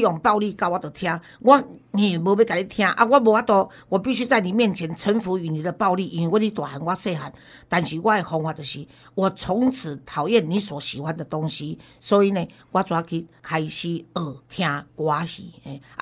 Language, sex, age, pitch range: Chinese, female, 50-69, 165-215 Hz